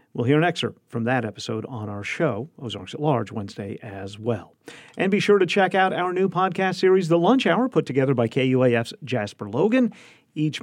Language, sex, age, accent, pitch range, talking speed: English, male, 50-69, American, 120-165 Hz, 205 wpm